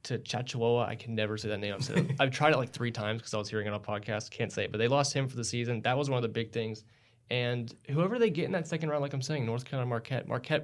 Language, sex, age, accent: English, male, 20-39, American